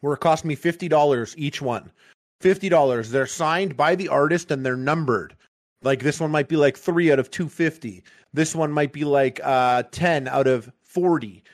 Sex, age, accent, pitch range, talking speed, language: male, 30-49, American, 130-160 Hz, 185 wpm, English